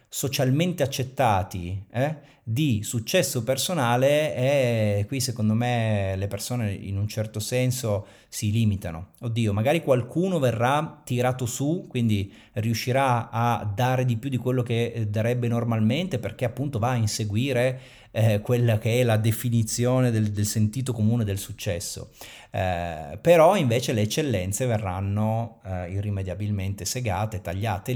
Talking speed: 135 wpm